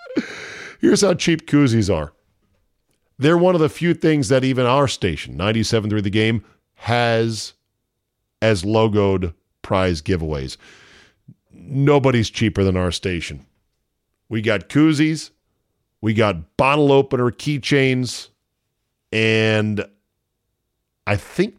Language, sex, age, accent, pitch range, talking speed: English, male, 40-59, American, 95-135 Hz, 110 wpm